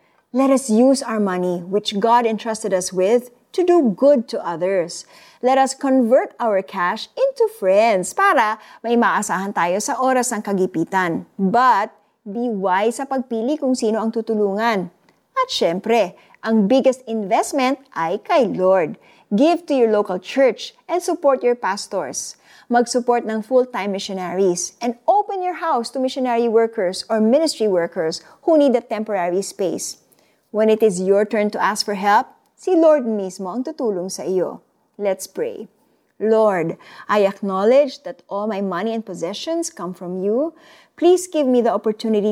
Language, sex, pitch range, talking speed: Filipino, female, 195-265 Hz, 155 wpm